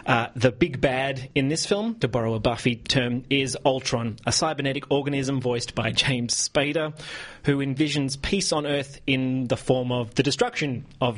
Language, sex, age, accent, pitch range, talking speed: English, male, 30-49, Australian, 120-145 Hz, 175 wpm